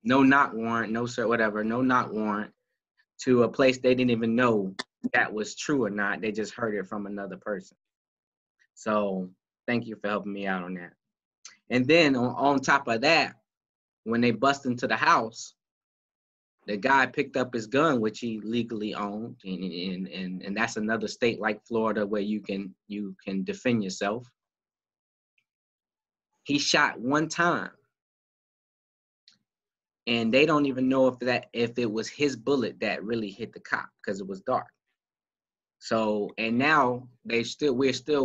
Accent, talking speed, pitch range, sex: American, 170 wpm, 105-130 Hz, male